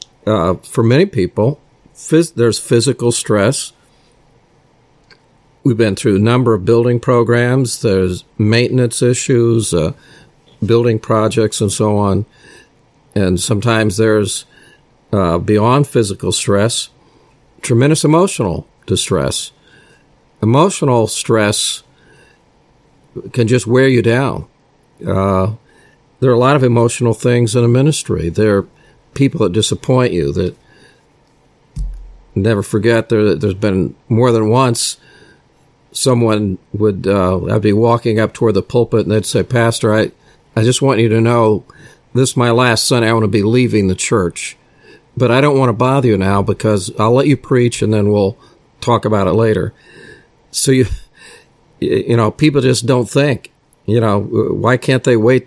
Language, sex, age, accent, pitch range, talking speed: English, male, 50-69, American, 105-125 Hz, 145 wpm